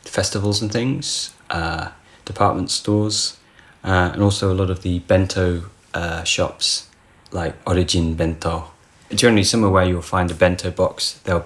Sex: male